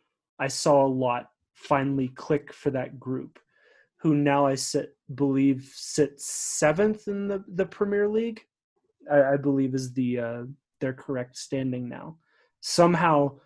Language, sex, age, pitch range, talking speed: English, male, 20-39, 130-150 Hz, 145 wpm